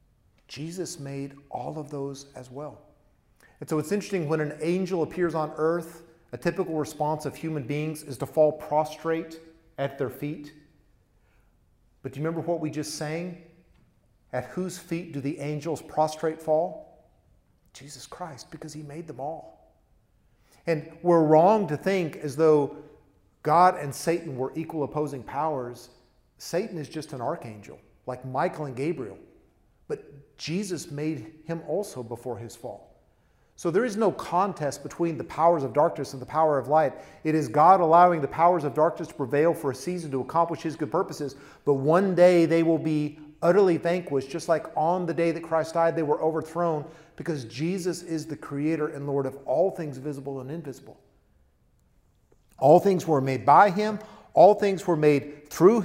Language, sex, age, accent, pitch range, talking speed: English, male, 40-59, American, 140-165 Hz, 170 wpm